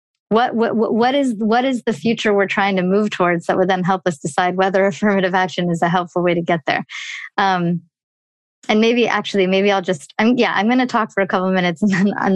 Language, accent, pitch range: English, American, 185-230 Hz